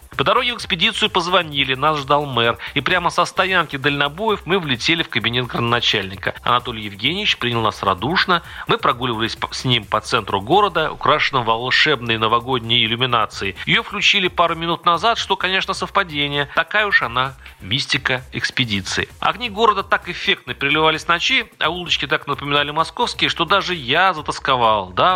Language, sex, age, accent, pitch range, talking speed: Russian, male, 40-59, native, 125-175 Hz, 155 wpm